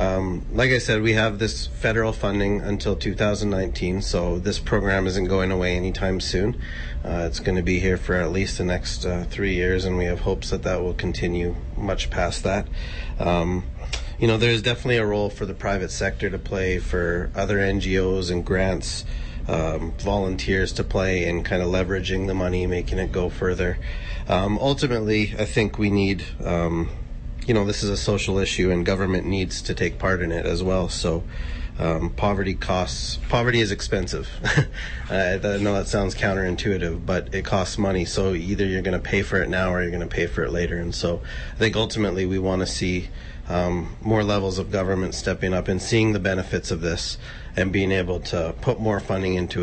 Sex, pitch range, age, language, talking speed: male, 85-100 Hz, 30-49, English, 195 wpm